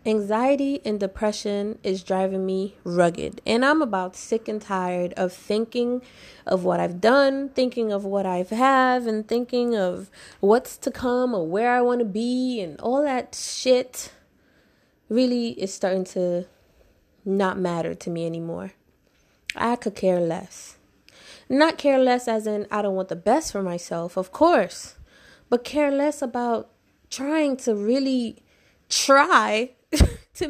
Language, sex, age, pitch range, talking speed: English, female, 20-39, 190-250 Hz, 150 wpm